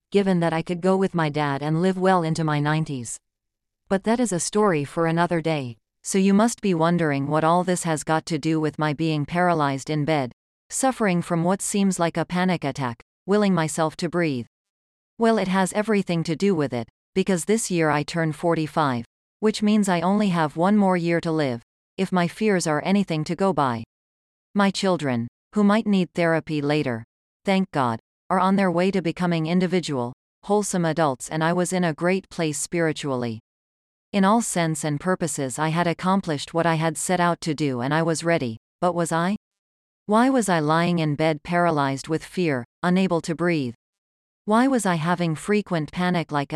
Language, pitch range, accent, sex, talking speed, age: English, 150-190 Hz, American, female, 195 wpm, 40-59